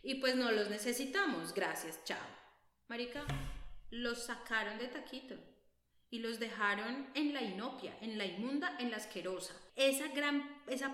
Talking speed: 150 wpm